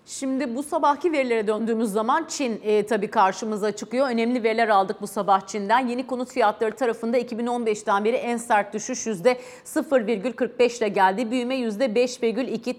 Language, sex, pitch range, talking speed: Turkish, female, 215-255 Hz, 145 wpm